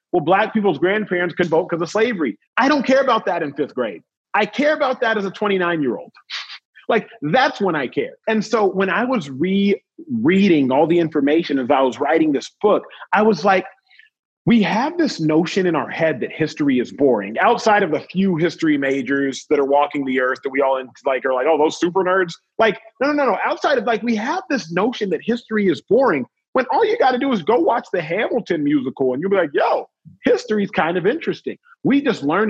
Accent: American